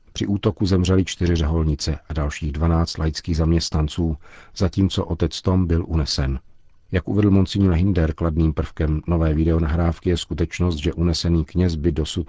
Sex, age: male, 50-69